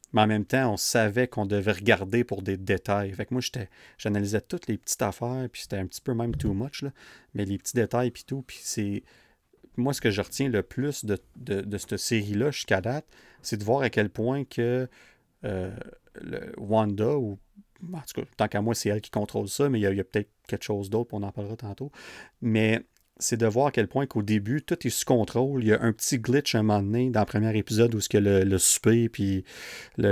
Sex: male